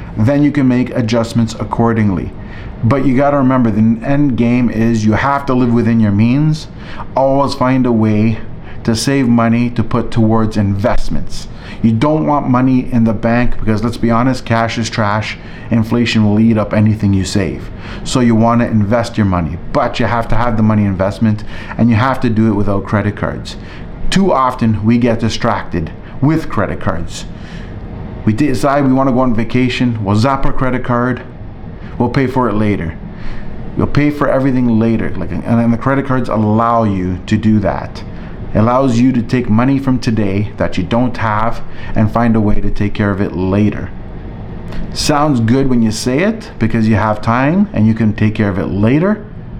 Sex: male